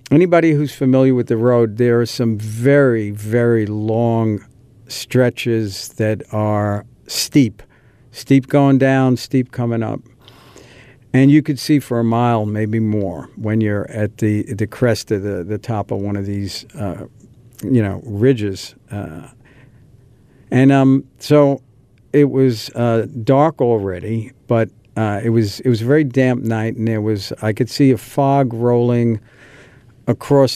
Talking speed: 155 wpm